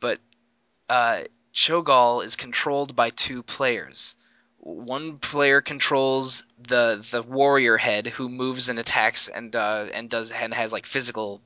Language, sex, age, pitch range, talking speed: English, male, 20-39, 120-135 Hz, 140 wpm